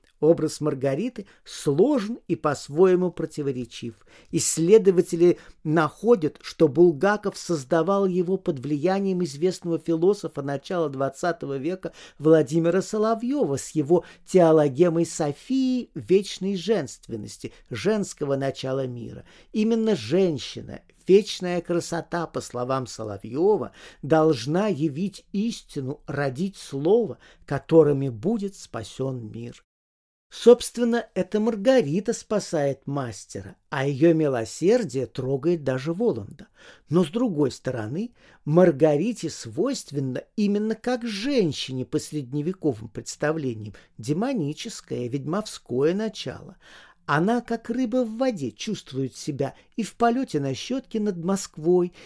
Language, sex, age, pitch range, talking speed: Russian, male, 50-69, 140-205 Hz, 100 wpm